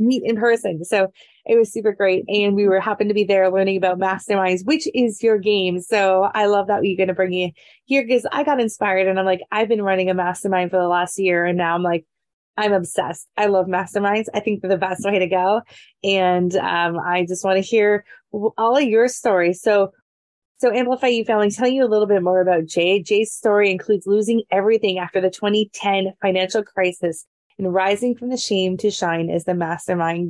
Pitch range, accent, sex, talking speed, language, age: 185-225 Hz, American, female, 215 wpm, English, 20-39